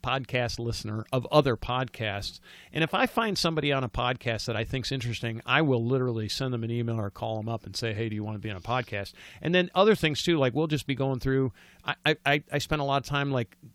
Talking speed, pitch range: 255 wpm, 115-145 Hz